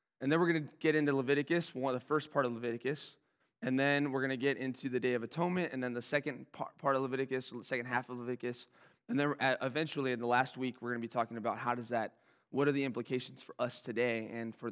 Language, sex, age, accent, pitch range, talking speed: English, male, 20-39, American, 125-150 Hz, 250 wpm